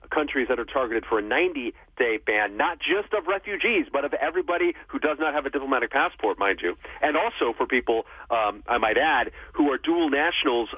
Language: English